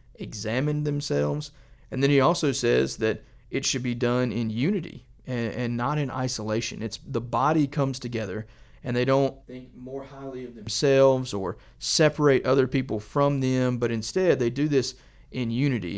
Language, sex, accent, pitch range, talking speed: English, male, American, 115-135 Hz, 170 wpm